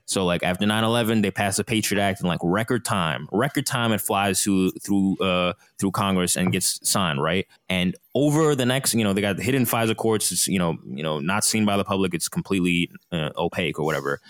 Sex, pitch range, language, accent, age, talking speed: male, 90-115 Hz, English, American, 20-39, 225 wpm